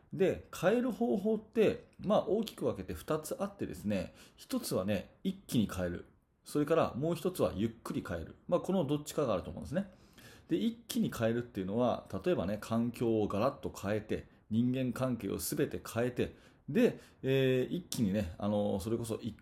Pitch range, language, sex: 105-155 Hz, Japanese, male